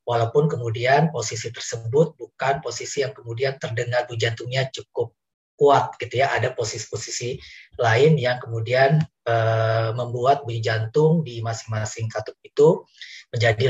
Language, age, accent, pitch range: Indonesian, 30-49, native, 115-140 Hz